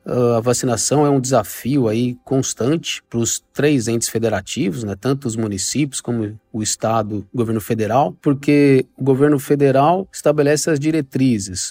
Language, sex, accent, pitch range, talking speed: Portuguese, male, Brazilian, 125-160 Hz, 150 wpm